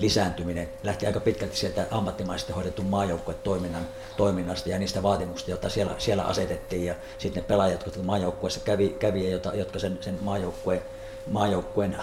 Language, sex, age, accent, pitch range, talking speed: Finnish, male, 60-79, native, 90-105 Hz, 150 wpm